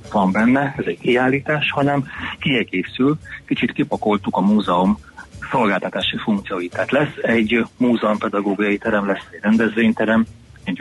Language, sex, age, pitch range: Hungarian, male, 30-49, 105-125 Hz